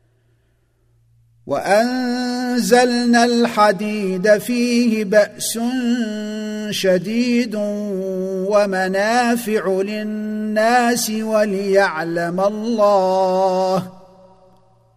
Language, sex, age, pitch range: Arabic, male, 50-69, 170-215 Hz